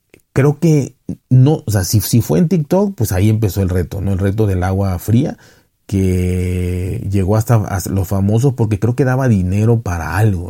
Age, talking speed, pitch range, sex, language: 40-59, 190 wpm, 100-120 Hz, male, Spanish